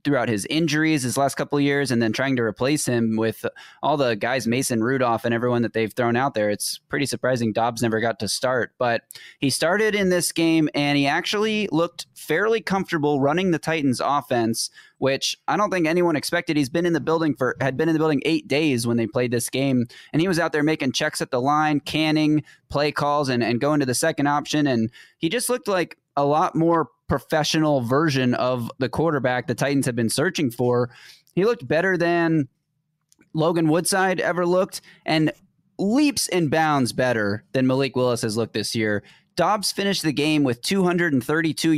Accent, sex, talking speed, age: American, male, 200 wpm, 20-39